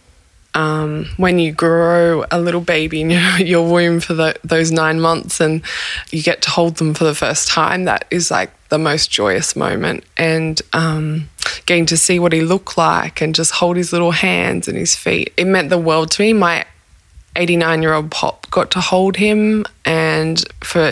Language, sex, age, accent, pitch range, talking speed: English, female, 20-39, Australian, 155-170 Hz, 190 wpm